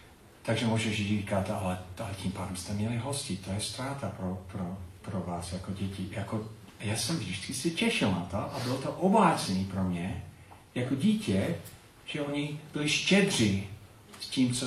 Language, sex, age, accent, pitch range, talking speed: Czech, male, 40-59, native, 95-120 Hz, 170 wpm